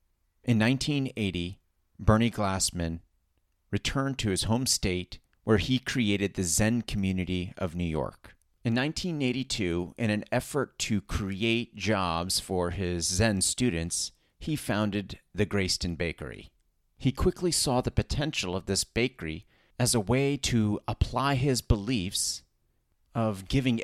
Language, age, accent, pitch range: English, 30-49, American, 90-120 Hz